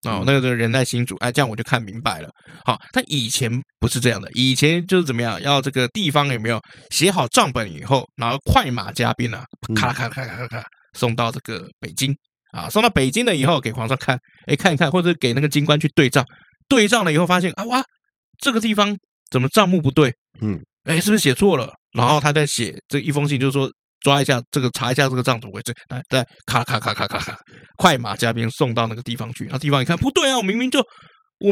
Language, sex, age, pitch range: Chinese, male, 20-39, 125-180 Hz